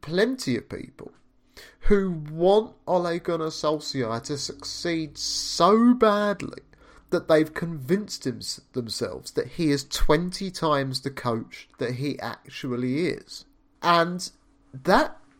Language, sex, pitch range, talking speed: English, male, 145-200 Hz, 115 wpm